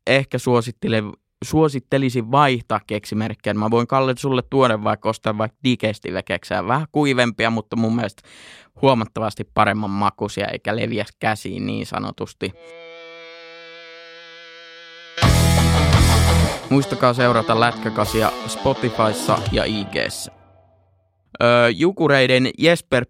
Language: Finnish